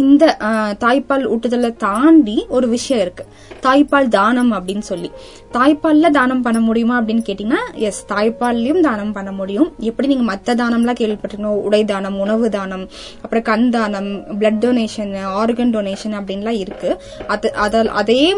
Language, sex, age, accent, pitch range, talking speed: Tamil, female, 20-39, native, 210-275 Hz, 135 wpm